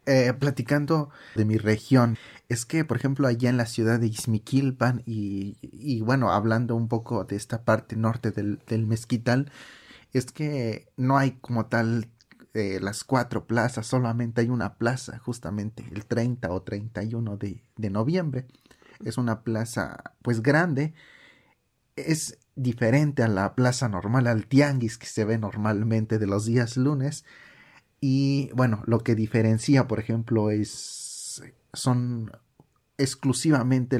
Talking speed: 145 wpm